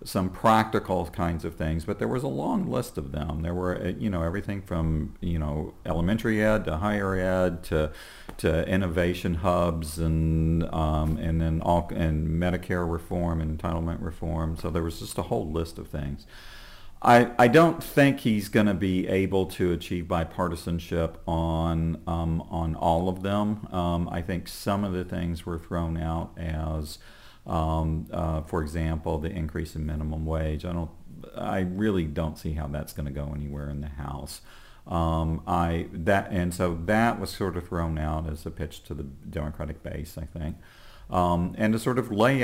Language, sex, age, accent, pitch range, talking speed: English, male, 40-59, American, 80-95 Hz, 180 wpm